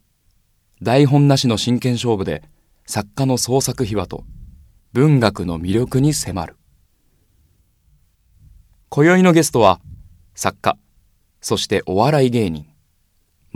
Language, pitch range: Japanese, 85-125 Hz